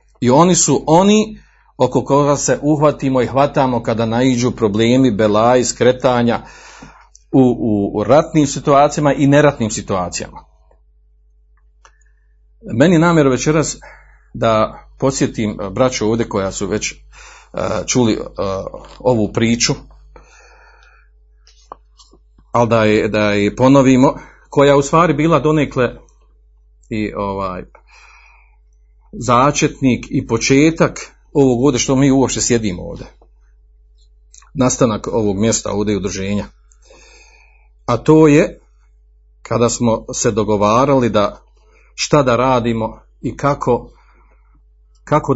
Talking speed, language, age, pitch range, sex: 105 wpm, Croatian, 50-69, 105-140 Hz, male